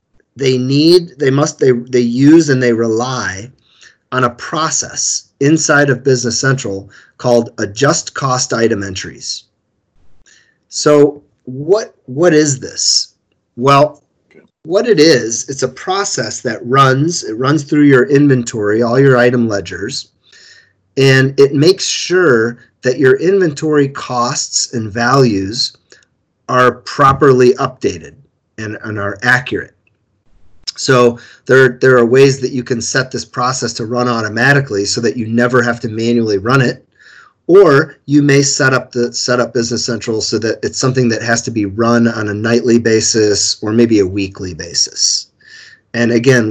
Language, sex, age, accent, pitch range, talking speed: English, male, 40-59, American, 110-135 Hz, 150 wpm